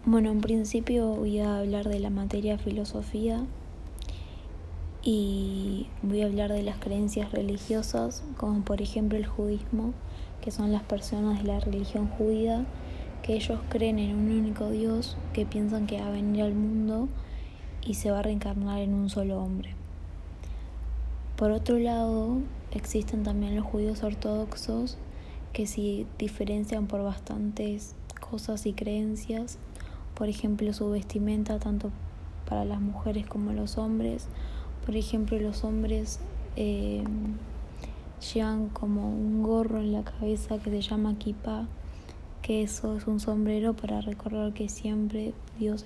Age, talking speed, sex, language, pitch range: 20-39, 140 wpm, female, Spanish, 190-215 Hz